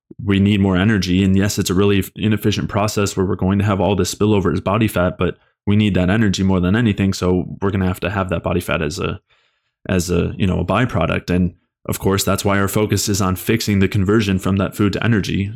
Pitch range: 95-105 Hz